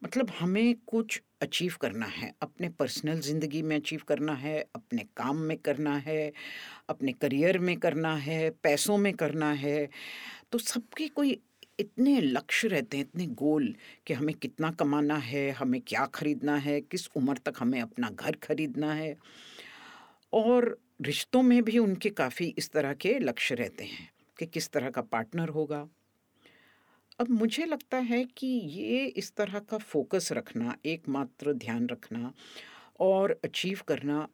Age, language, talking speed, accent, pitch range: 50-69, Hindi, 155 wpm, native, 150-230 Hz